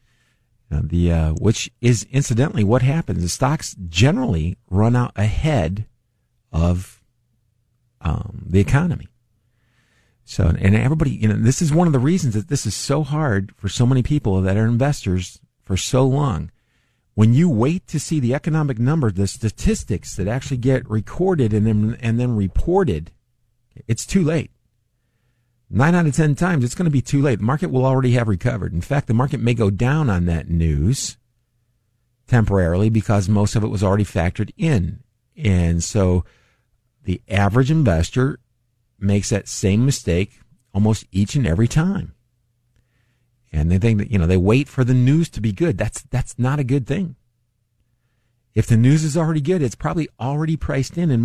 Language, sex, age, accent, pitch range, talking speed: English, male, 50-69, American, 105-135 Hz, 175 wpm